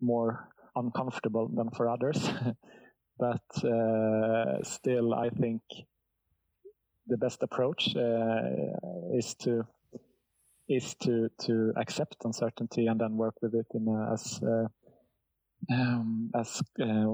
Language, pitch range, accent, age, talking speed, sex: English, 110-125 Hz, Norwegian, 30-49, 115 wpm, male